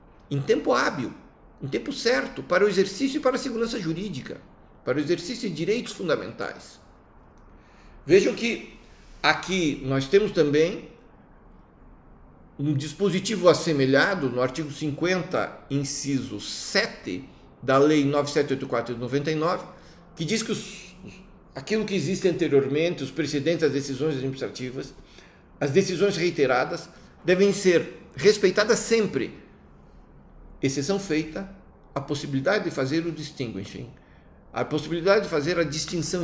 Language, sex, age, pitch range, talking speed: Portuguese, male, 60-79, 135-185 Hz, 120 wpm